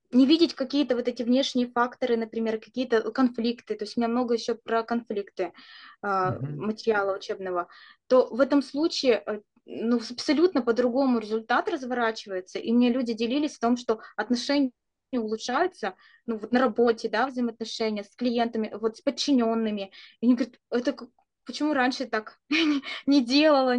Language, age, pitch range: Russian, 20-39, 225-275 Hz